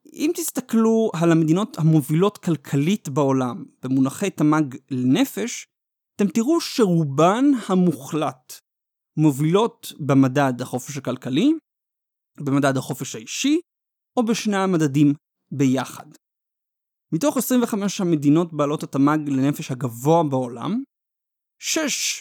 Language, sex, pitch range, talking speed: Hebrew, male, 140-210 Hz, 90 wpm